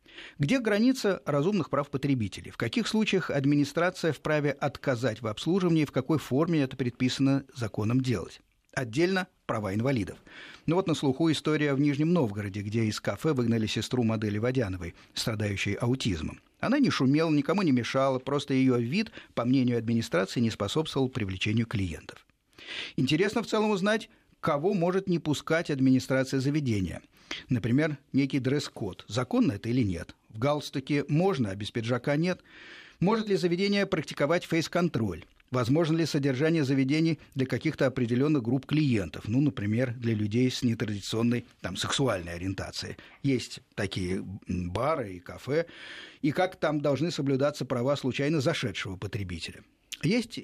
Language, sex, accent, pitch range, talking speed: Russian, male, native, 115-160 Hz, 140 wpm